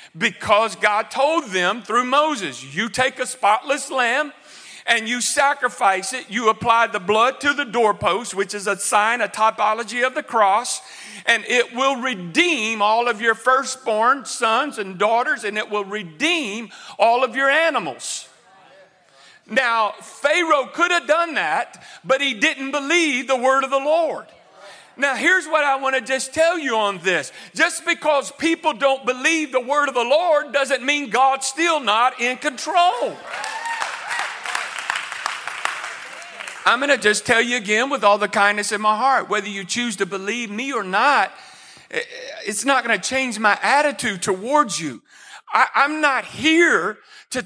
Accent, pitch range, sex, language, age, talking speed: American, 215-285 Hz, male, English, 50-69, 160 wpm